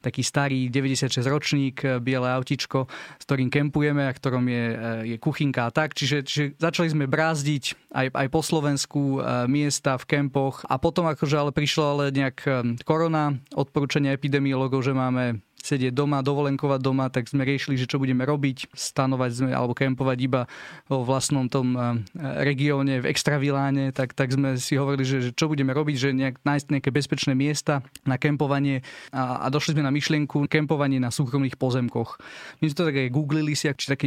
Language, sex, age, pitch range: Slovak, male, 20-39, 130-145 Hz